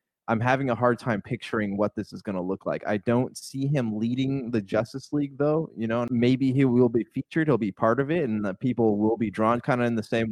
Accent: American